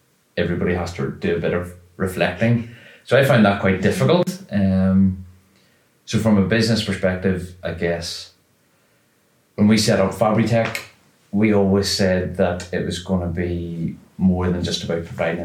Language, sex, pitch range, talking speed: English, male, 85-100 Hz, 160 wpm